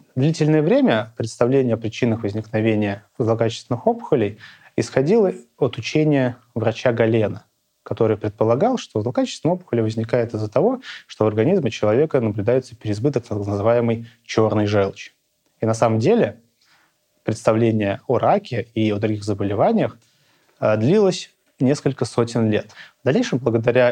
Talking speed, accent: 125 wpm, native